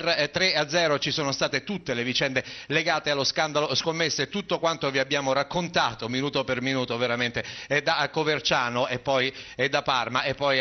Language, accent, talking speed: Italian, native, 170 wpm